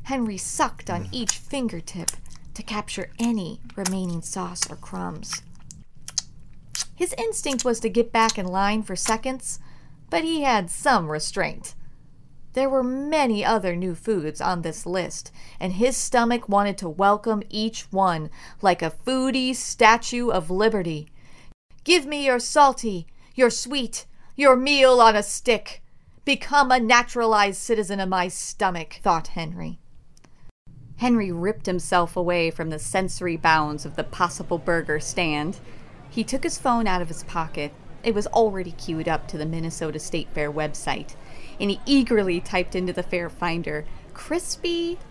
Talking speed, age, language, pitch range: 150 wpm, 40-59, English, 170-240 Hz